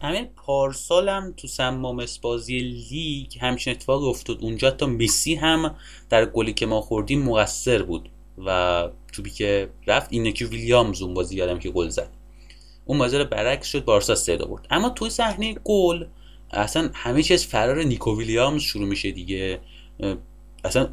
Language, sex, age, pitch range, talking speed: English, male, 30-49, 100-135 Hz, 155 wpm